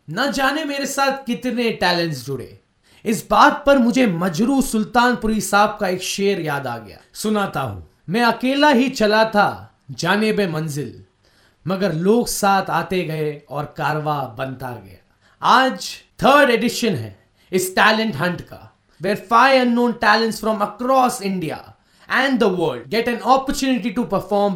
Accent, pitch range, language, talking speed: native, 155-235 Hz, Hindi, 150 wpm